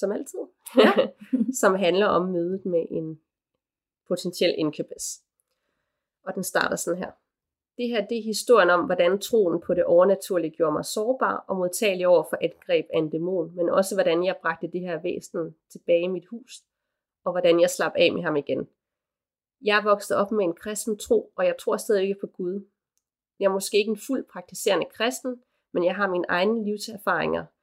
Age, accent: 30-49, native